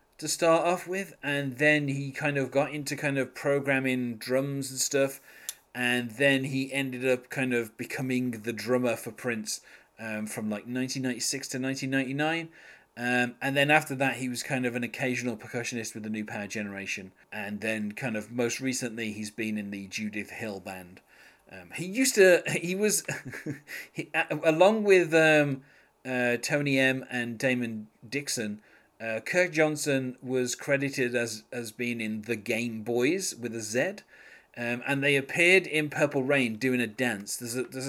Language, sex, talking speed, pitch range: English, male, 170 wpm, 115-140 Hz